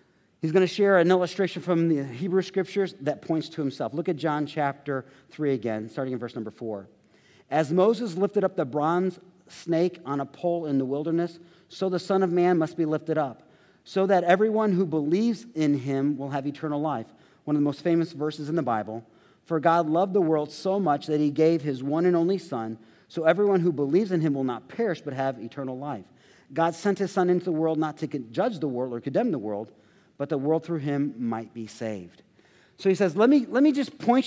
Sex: male